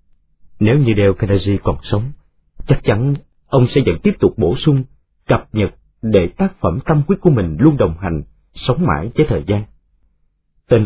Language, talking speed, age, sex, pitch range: Vietnamese, 180 wpm, 30-49, male, 80-135 Hz